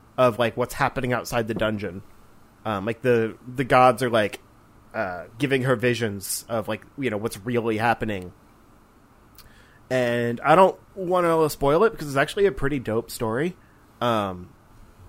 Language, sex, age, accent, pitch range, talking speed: English, male, 30-49, American, 110-135 Hz, 160 wpm